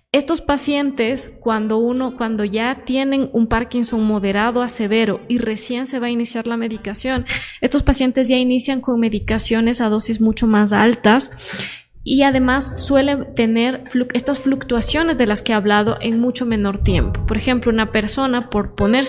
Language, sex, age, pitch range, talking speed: Spanish, female, 20-39, 220-250 Hz, 160 wpm